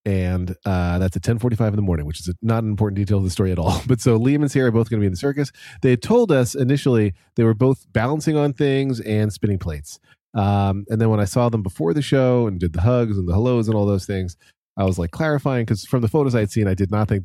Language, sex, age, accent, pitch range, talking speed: English, male, 30-49, American, 90-115 Hz, 285 wpm